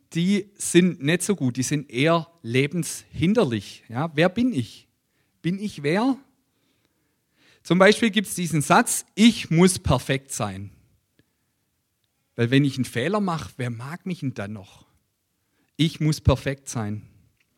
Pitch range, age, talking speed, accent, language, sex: 130-190 Hz, 40-59, 140 wpm, German, German, male